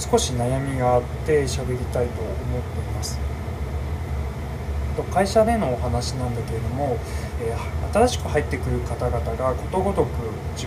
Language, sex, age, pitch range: Japanese, male, 20-39, 70-80 Hz